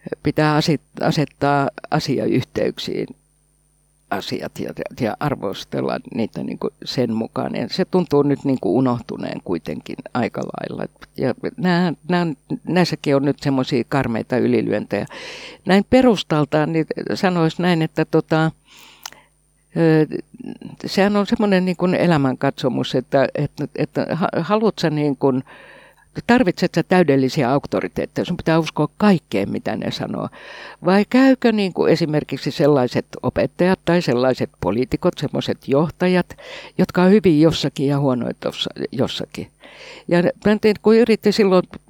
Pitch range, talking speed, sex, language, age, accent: 140-180 Hz, 95 wpm, female, Finnish, 60-79, native